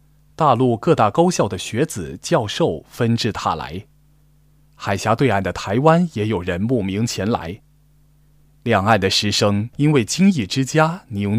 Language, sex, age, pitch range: Chinese, male, 20-39, 105-150 Hz